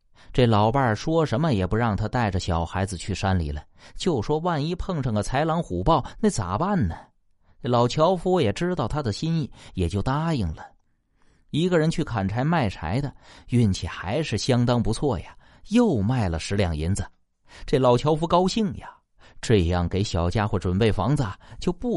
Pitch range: 95-150 Hz